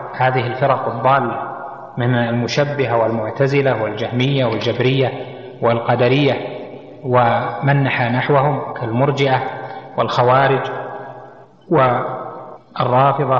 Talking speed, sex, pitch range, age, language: 65 wpm, male, 130-150 Hz, 30-49, Arabic